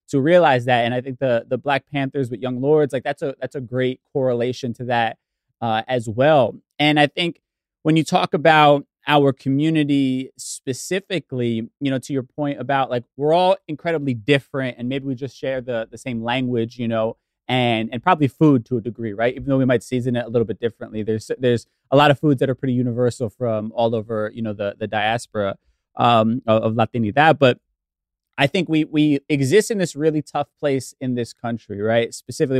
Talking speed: 205 wpm